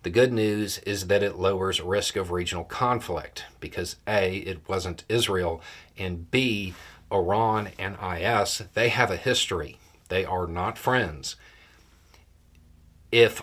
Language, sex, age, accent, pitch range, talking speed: English, male, 40-59, American, 85-110 Hz, 135 wpm